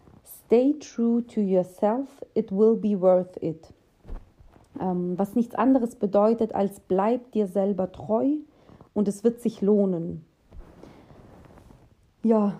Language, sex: German, female